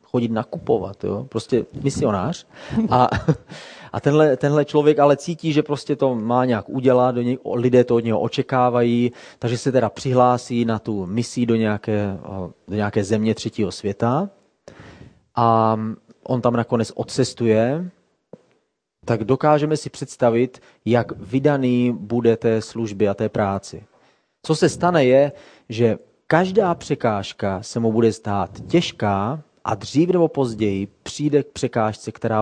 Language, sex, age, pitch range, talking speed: Czech, male, 30-49, 110-135 Hz, 140 wpm